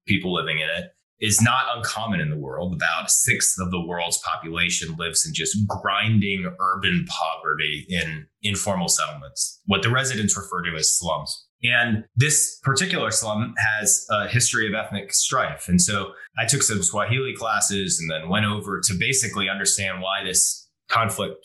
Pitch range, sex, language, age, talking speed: 95-115 Hz, male, English, 20-39, 170 wpm